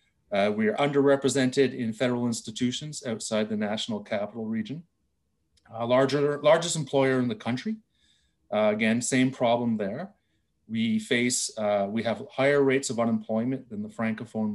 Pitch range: 110-140 Hz